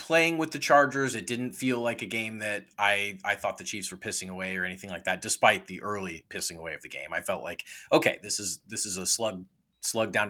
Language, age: English, 30-49